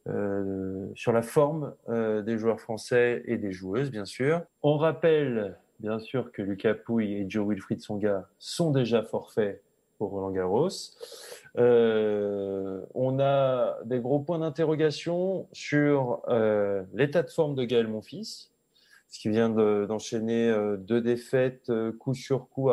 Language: French